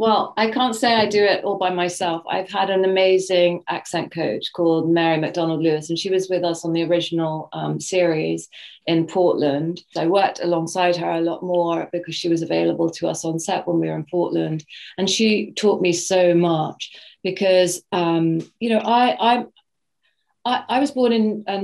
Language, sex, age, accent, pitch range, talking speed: English, female, 40-59, British, 175-200 Hz, 195 wpm